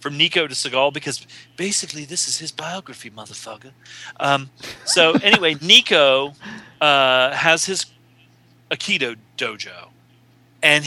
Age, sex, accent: 40-59, male, American